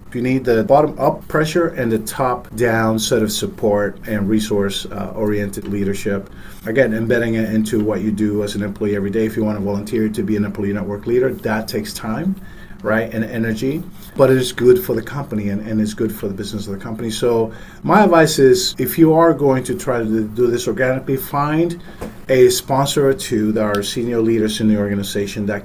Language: English